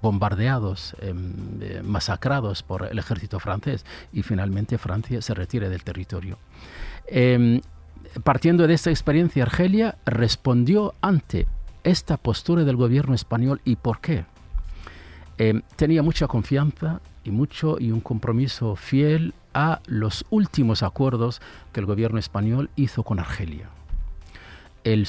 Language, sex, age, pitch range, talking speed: Spanish, male, 50-69, 100-140 Hz, 125 wpm